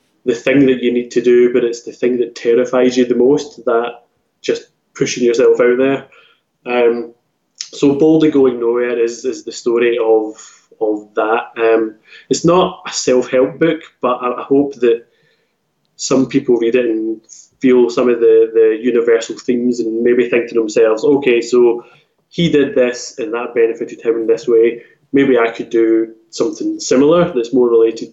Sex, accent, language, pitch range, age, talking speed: male, British, English, 120-150 Hz, 20-39, 175 wpm